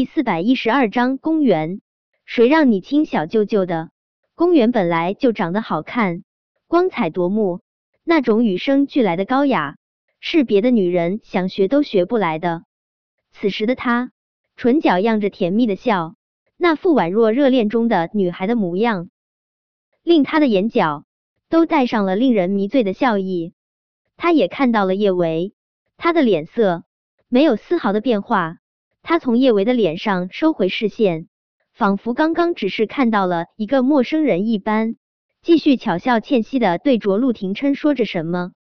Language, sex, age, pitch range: Chinese, male, 20-39, 190-275 Hz